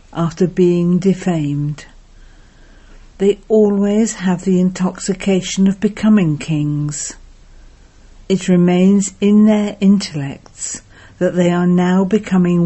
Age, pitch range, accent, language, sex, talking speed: 50-69, 150-195 Hz, British, English, female, 100 wpm